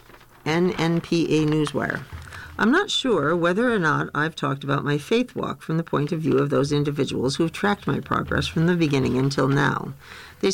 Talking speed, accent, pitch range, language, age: 180 wpm, American, 140-195 Hz, English, 60-79